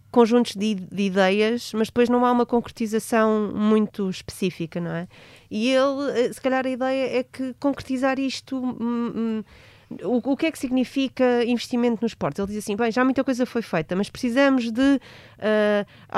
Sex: female